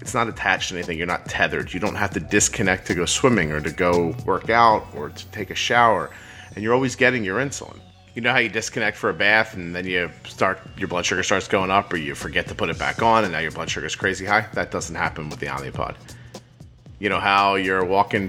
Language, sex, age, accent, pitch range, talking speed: English, male, 30-49, American, 95-125 Hz, 255 wpm